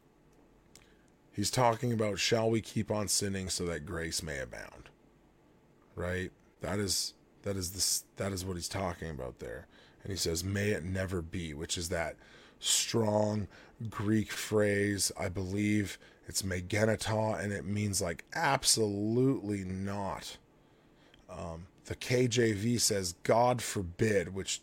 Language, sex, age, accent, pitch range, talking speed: English, male, 20-39, American, 95-110 Hz, 135 wpm